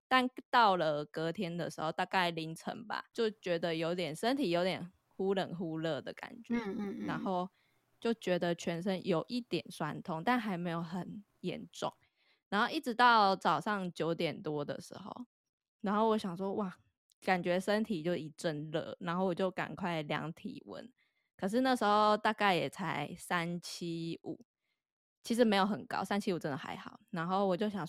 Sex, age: female, 20-39